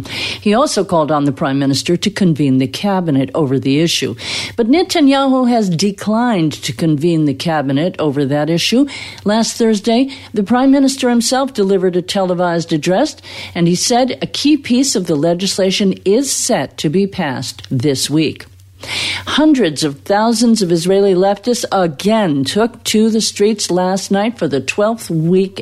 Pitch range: 150-220 Hz